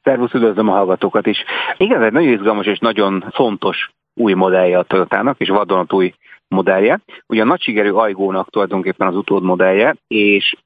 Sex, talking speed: male, 170 wpm